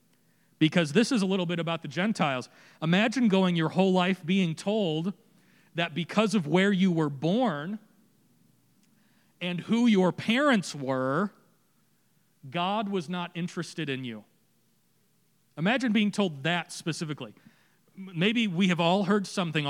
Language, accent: English, American